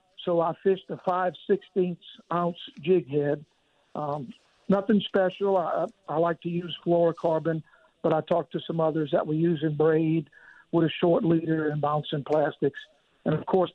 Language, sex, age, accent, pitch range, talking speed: English, male, 60-79, American, 160-185 Hz, 155 wpm